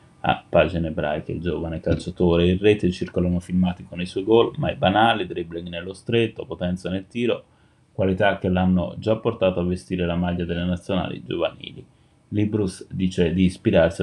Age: 20-39